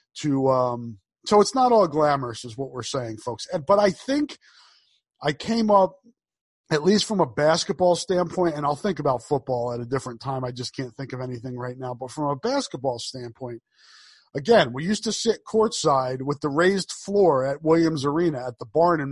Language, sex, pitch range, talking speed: English, male, 135-185 Hz, 195 wpm